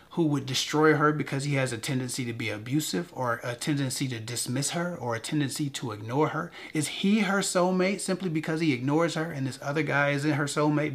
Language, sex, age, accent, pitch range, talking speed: English, male, 30-49, American, 120-150 Hz, 220 wpm